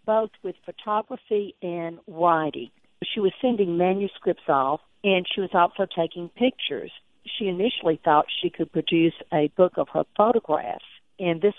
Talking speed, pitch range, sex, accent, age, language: 150 wpm, 160-195 Hz, female, American, 50-69, English